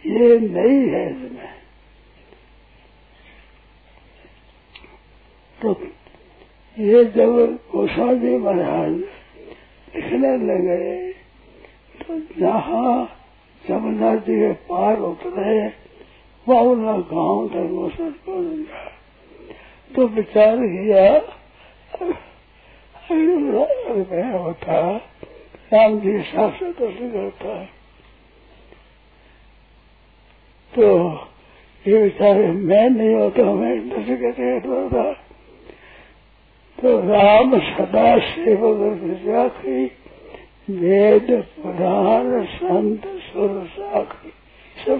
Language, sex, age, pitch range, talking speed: Hindi, male, 60-79, 190-300 Hz, 55 wpm